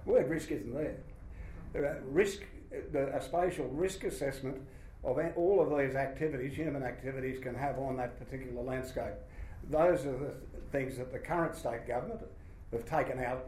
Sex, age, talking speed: male, 60-79, 165 wpm